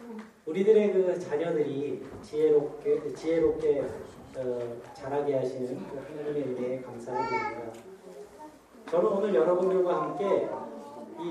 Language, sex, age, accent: Korean, male, 40-59, native